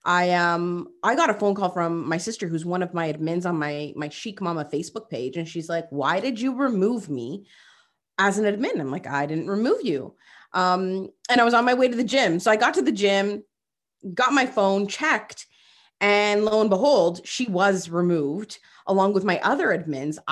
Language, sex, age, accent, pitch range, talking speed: English, female, 30-49, American, 170-225 Hz, 215 wpm